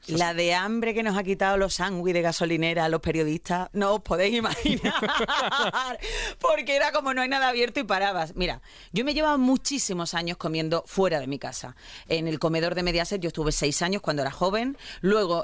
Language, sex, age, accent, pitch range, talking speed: Spanish, female, 30-49, Spanish, 160-220 Hz, 200 wpm